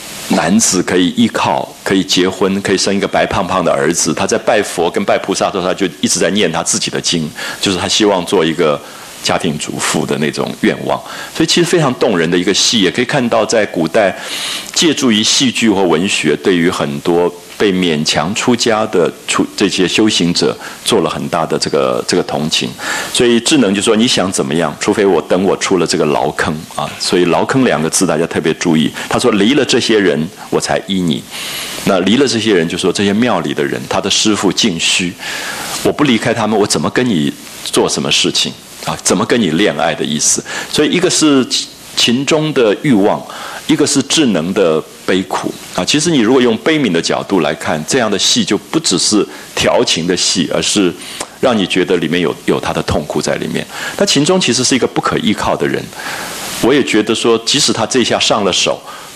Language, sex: English, male